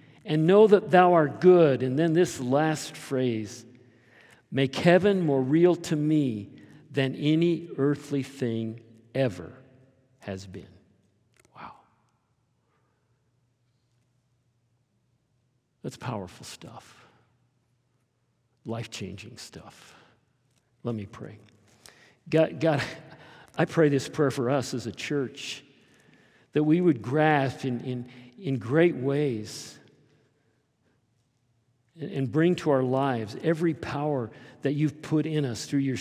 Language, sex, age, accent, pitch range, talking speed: English, male, 50-69, American, 120-150 Hz, 110 wpm